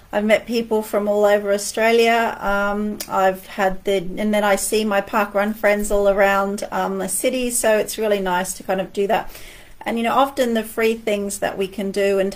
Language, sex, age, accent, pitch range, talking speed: English, female, 30-49, Australian, 190-220 Hz, 230 wpm